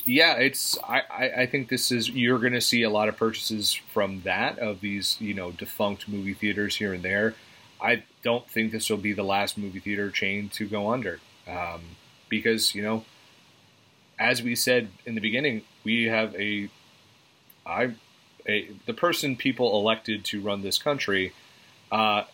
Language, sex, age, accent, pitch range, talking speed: English, male, 30-49, American, 105-125 Hz, 170 wpm